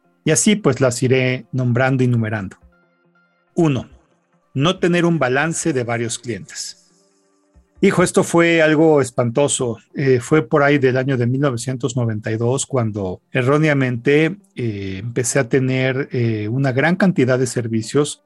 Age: 40-59